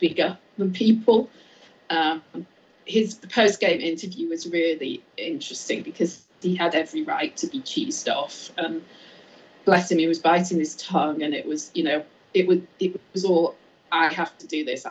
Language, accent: English, British